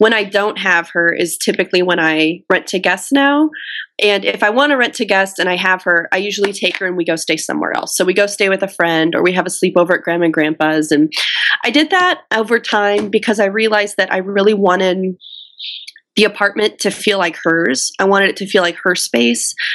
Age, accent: 20-39, American